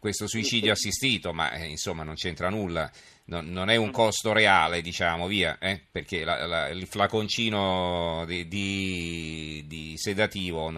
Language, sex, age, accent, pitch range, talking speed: Italian, male, 40-59, native, 90-110 Hz, 135 wpm